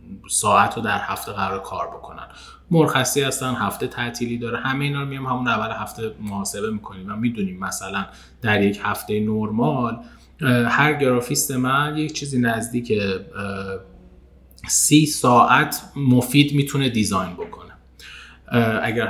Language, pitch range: Persian, 105-150 Hz